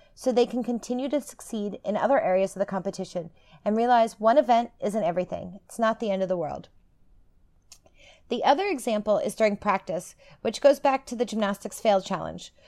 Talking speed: 185 wpm